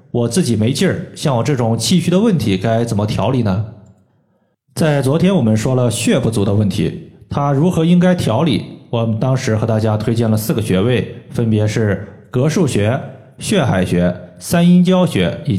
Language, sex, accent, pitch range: Chinese, male, native, 110-150 Hz